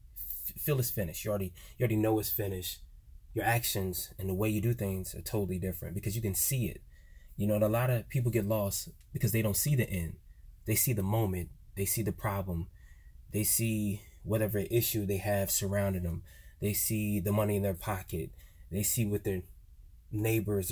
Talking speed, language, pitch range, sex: 200 wpm, English, 90-110 Hz, male